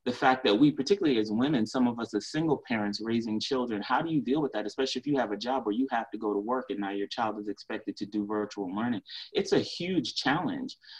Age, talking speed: 30-49, 260 wpm